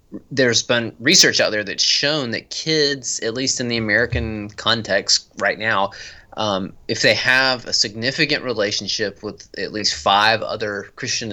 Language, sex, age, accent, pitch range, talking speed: English, male, 20-39, American, 95-120 Hz, 160 wpm